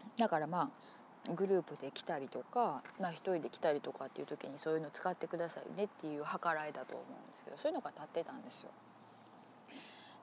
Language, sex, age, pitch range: Japanese, female, 20-39, 155-215 Hz